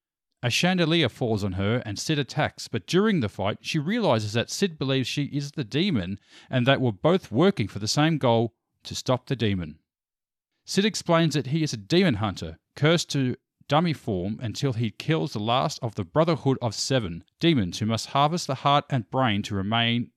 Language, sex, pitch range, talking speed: English, male, 110-155 Hz, 195 wpm